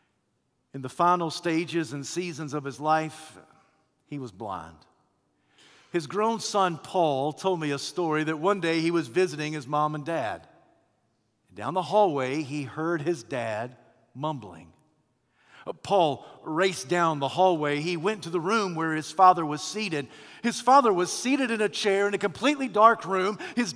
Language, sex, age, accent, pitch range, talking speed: English, male, 50-69, American, 145-210 Hz, 165 wpm